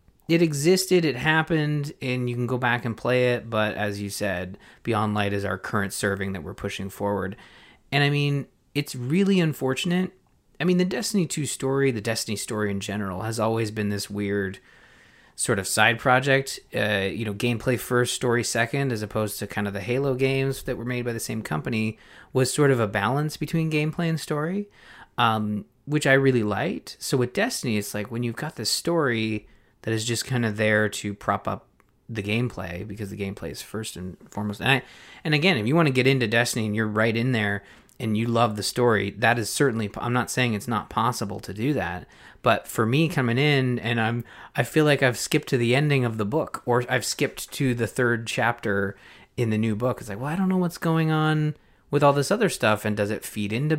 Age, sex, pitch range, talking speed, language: 30-49, male, 105-140 Hz, 220 wpm, English